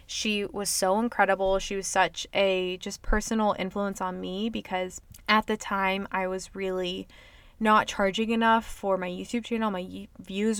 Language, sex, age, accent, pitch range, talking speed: English, female, 20-39, American, 190-225 Hz, 165 wpm